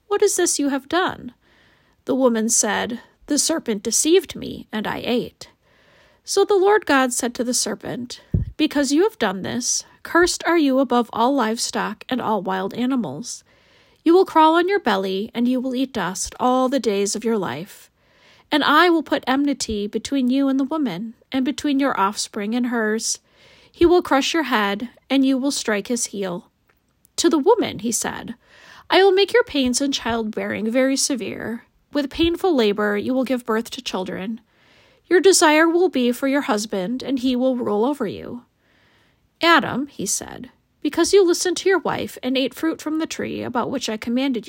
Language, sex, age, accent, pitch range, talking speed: English, female, 40-59, American, 225-315 Hz, 185 wpm